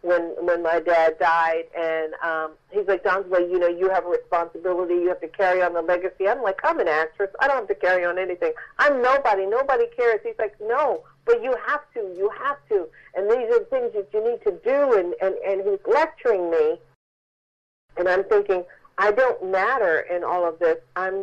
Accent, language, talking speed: American, English, 220 wpm